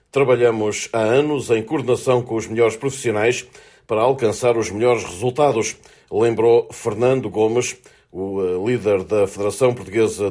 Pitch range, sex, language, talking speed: 115-140 Hz, male, Portuguese, 130 wpm